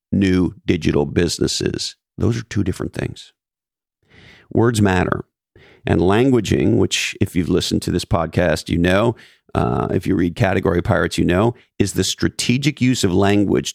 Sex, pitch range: male, 90-110 Hz